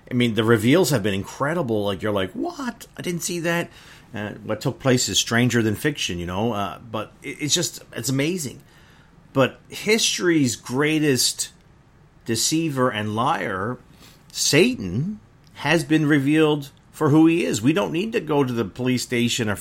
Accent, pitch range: American, 105-145 Hz